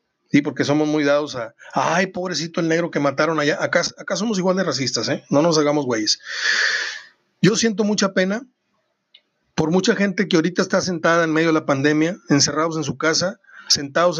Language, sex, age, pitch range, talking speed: Spanish, male, 40-59, 150-195 Hz, 190 wpm